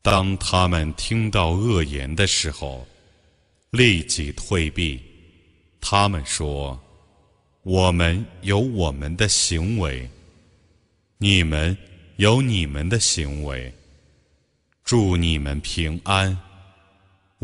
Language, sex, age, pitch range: Chinese, male, 30-49, 80-105 Hz